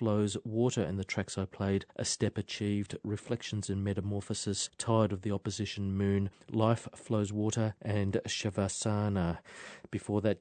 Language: English